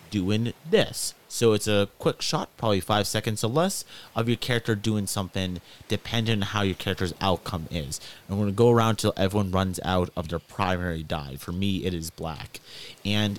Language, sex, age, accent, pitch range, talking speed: English, male, 30-49, American, 95-115 Hz, 195 wpm